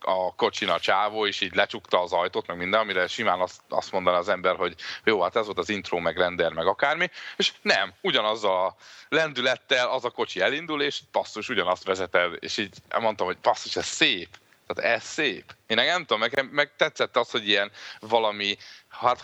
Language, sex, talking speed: Hungarian, male, 200 wpm